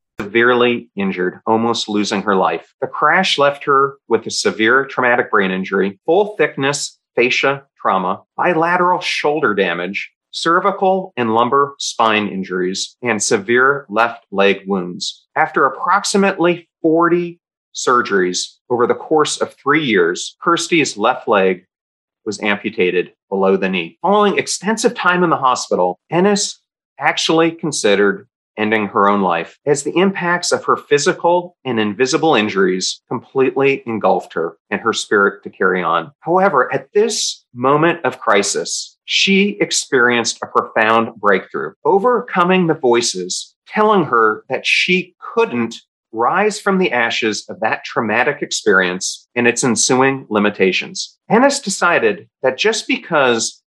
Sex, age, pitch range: male, 40-59, 110-180 Hz